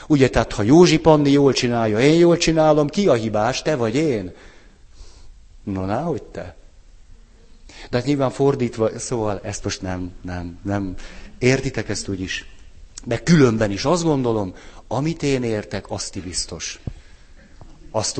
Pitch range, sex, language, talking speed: 110-150 Hz, male, Hungarian, 140 wpm